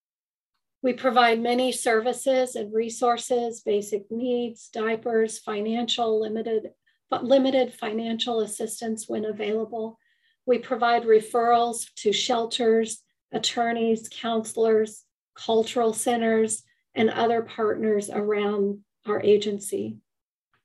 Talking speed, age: 95 wpm, 40-59